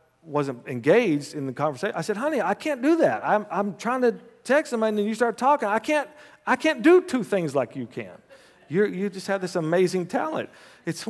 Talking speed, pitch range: 220 wpm, 110-175 Hz